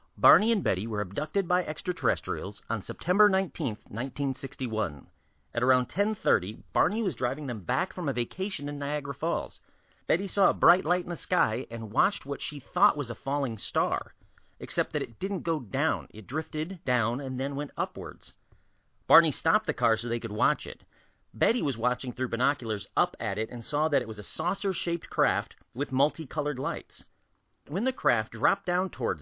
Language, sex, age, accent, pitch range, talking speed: English, male, 40-59, American, 120-180 Hz, 185 wpm